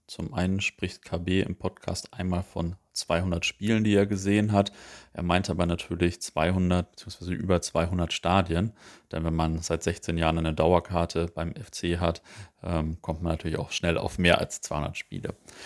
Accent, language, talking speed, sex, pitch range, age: German, German, 170 wpm, male, 85-100 Hz, 30-49